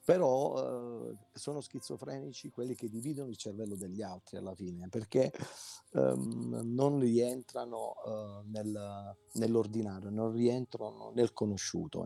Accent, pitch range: native, 100-125 Hz